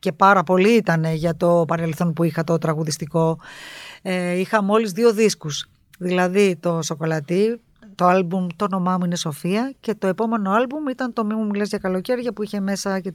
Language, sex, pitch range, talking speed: Greek, female, 170-230 Hz, 185 wpm